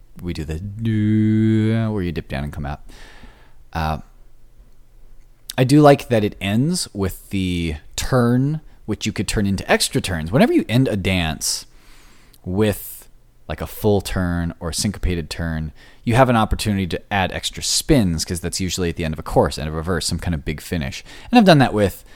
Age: 30-49